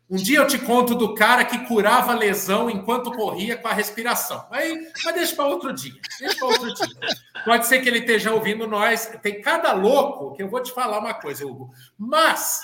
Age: 50-69